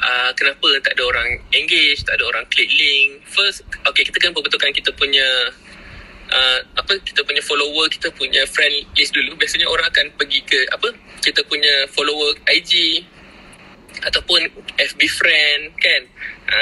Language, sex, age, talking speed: Malay, male, 20-39, 160 wpm